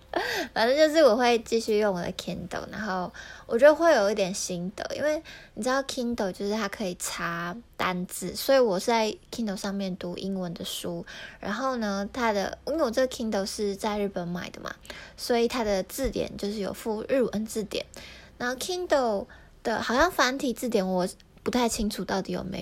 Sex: female